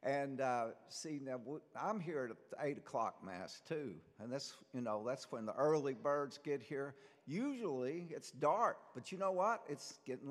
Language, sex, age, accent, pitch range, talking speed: English, male, 60-79, American, 120-150 Hz, 180 wpm